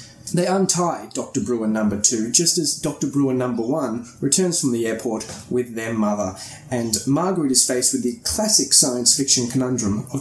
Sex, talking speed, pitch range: male, 175 wpm, 115-140 Hz